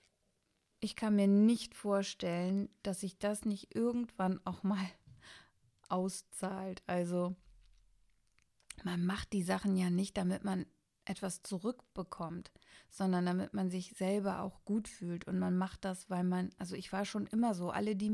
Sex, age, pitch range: female, 30-49, 180-225 Hz